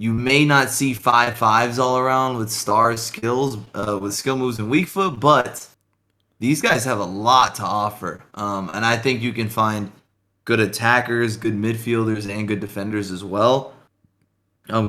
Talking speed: 170 wpm